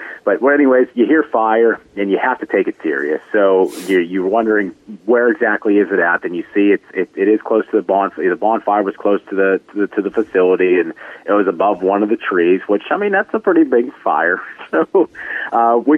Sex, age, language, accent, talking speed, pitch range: male, 40-59, English, American, 235 wpm, 95-120 Hz